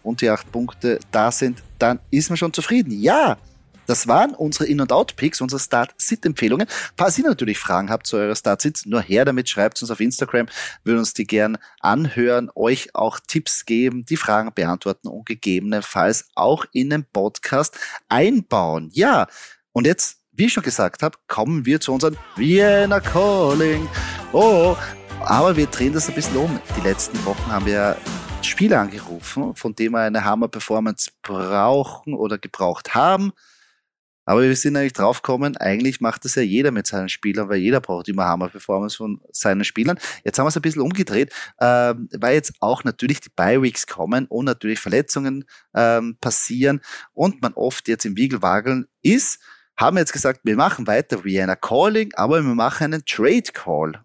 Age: 30-49